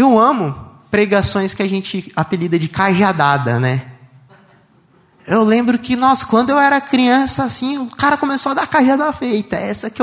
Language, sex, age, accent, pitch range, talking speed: Portuguese, male, 20-39, Brazilian, 135-225 Hz, 170 wpm